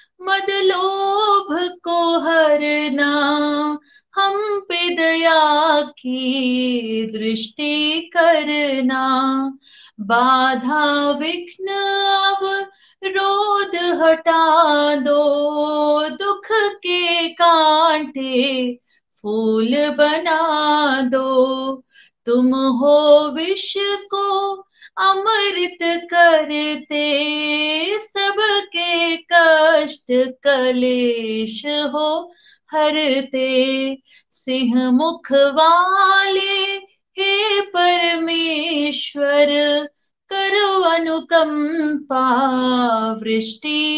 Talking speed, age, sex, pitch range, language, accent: 50 wpm, 20-39, female, 275-360 Hz, Hindi, native